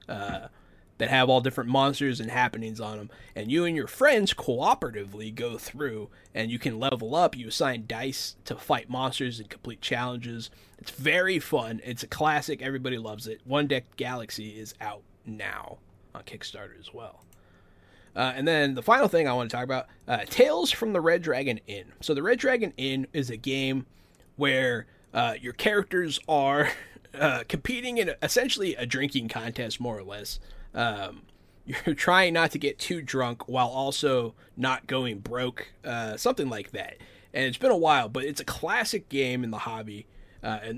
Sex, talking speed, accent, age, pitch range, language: male, 180 wpm, American, 20-39, 110-140 Hz, English